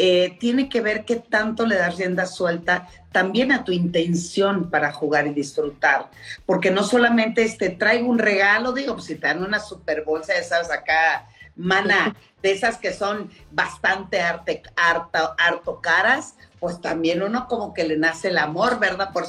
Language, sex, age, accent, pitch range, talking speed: Spanish, female, 40-59, Mexican, 170-215 Hz, 175 wpm